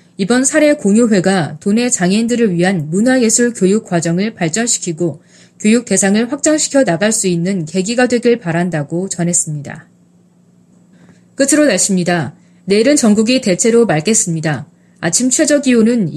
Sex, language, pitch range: female, Korean, 175-245 Hz